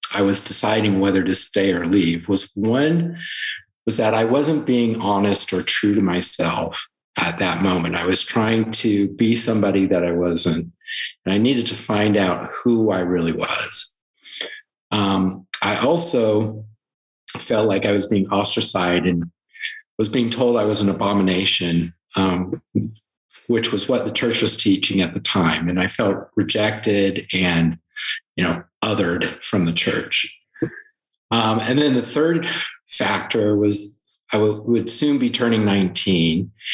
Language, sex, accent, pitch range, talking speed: English, male, American, 95-115 Hz, 155 wpm